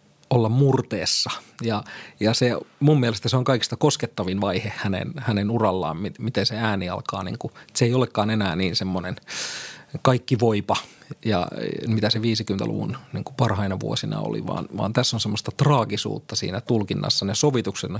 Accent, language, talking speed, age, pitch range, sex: native, Finnish, 160 wpm, 30-49, 100-125 Hz, male